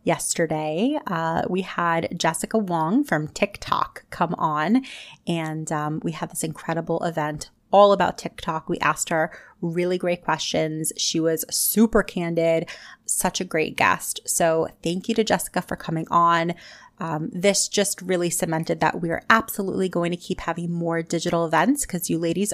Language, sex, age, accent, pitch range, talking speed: English, female, 30-49, American, 170-210 Hz, 160 wpm